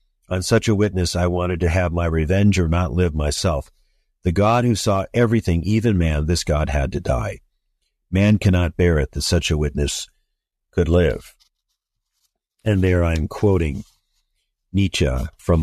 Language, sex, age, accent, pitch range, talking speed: English, male, 50-69, American, 85-105 Hz, 165 wpm